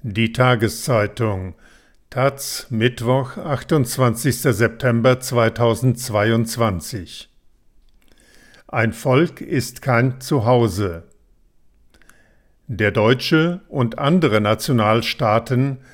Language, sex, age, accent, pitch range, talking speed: German, male, 50-69, German, 115-140 Hz, 65 wpm